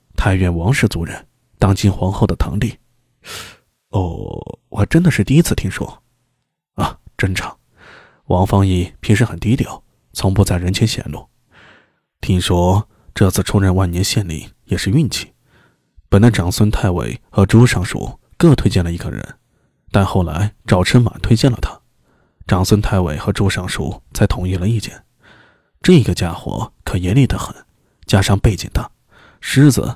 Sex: male